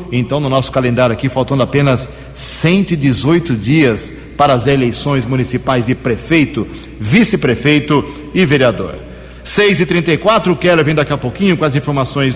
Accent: Brazilian